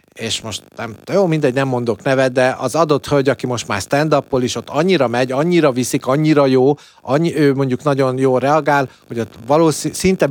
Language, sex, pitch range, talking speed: Hungarian, male, 120-160 Hz, 205 wpm